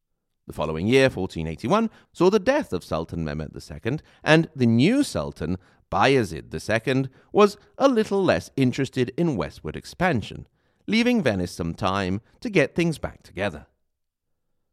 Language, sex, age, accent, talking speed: English, male, 40-59, British, 140 wpm